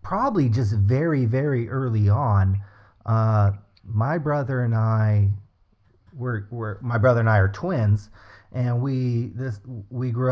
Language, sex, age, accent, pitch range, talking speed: English, male, 30-49, American, 105-135 Hz, 140 wpm